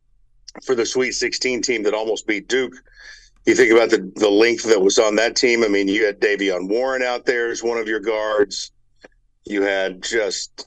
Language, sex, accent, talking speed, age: English, male, American, 200 wpm, 50-69